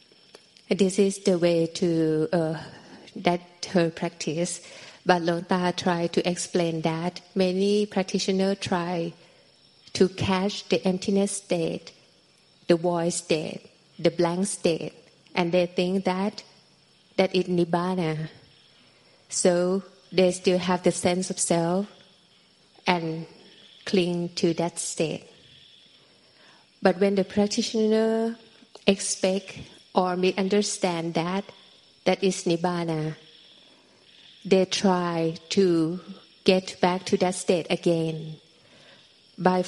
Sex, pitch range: female, 170-195 Hz